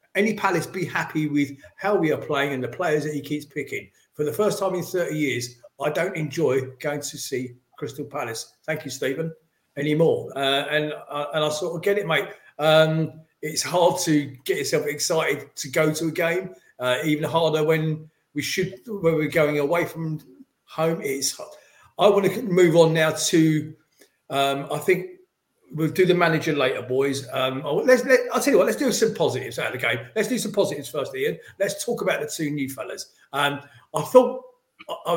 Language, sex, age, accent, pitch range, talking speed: English, male, 40-59, British, 145-185 Hz, 200 wpm